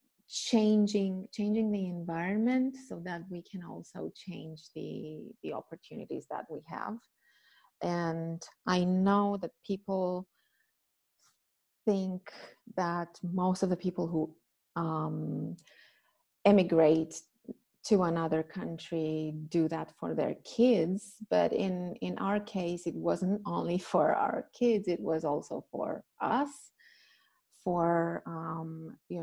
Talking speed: 115 wpm